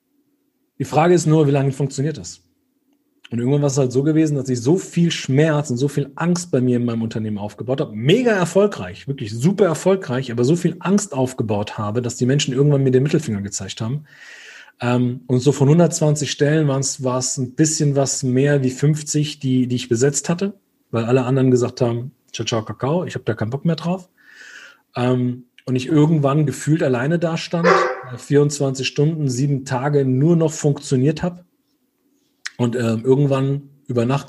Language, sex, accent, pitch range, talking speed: German, male, German, 120-155 Hz, 185 wpm